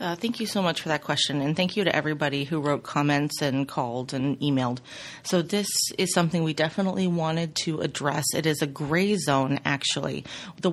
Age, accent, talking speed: 30-49, American, 200 wpm